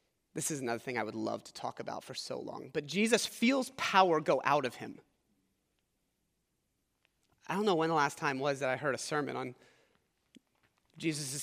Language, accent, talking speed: English, American, 190 wpm